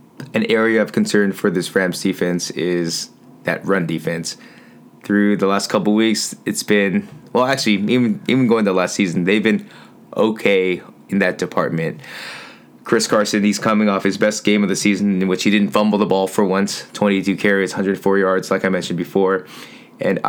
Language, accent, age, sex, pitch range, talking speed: English, American, 20-39, male, 95-110 Hz, 190 wpm